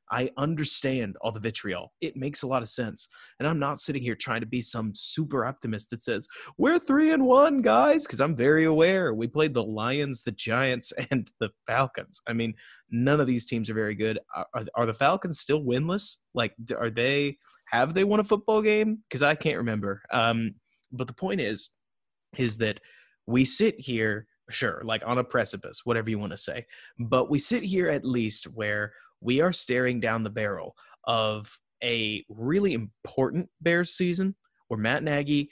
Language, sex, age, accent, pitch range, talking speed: English, male, 20-39, American, 115-150 Hz, 190 wpm